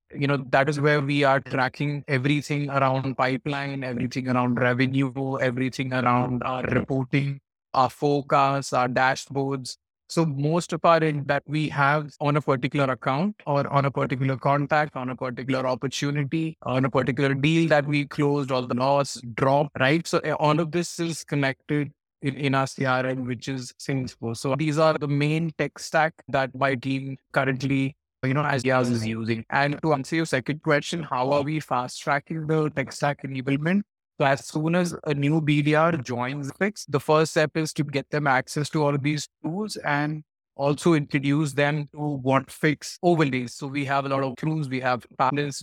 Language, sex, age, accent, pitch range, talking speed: English, male, 20-39, Indian, 130-150 Hz, 180 wpm